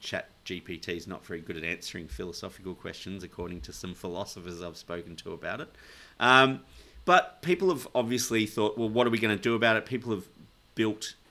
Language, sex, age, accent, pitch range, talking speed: English, male, 30-49, Australian, 90-110 Hz, 195 wpm